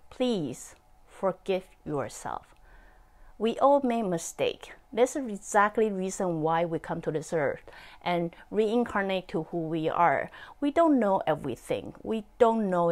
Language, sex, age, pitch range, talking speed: English, female, 30-49, 180-265 Hz, 145 wpm